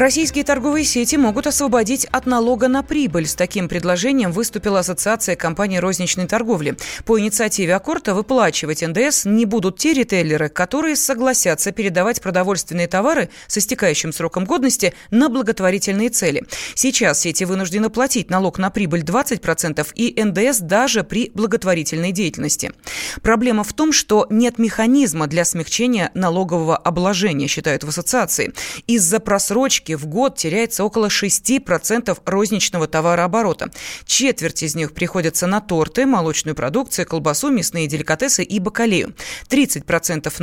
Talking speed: 130 wpm